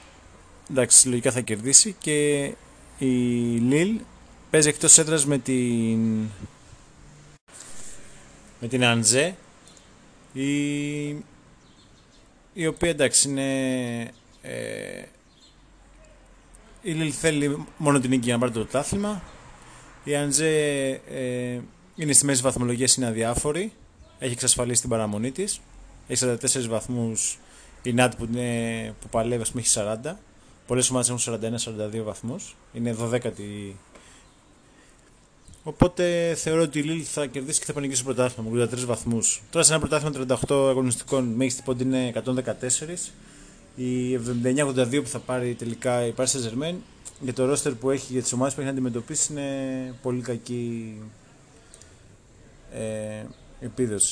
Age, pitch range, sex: 30-49, 115-140 Hz, male